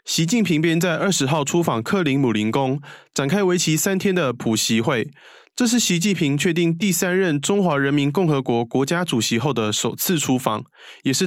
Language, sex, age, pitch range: Chinese, male, 20-39, 130-185 Hz